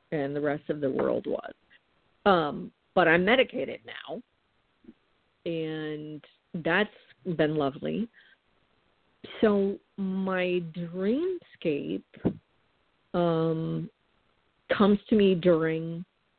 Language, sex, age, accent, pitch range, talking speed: English, female, 50-69, American, 160-190 Hz, 90 wpm